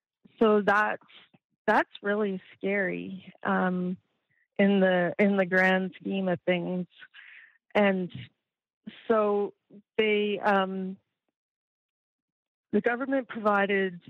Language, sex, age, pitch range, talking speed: English, female, 30-49, 185-220 Hz, 90 wpm